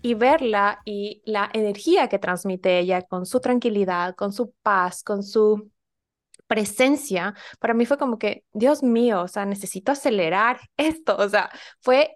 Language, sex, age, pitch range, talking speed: Spanish, female, 20-39, 205-250 Hz, 160 wpm